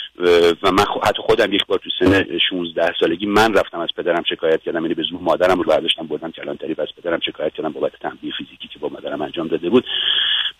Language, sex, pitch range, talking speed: Persian, male, 100-140 Hz, 205 wpm